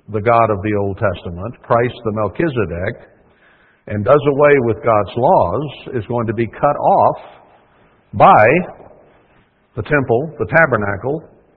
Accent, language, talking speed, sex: American, English, 135 wpm, male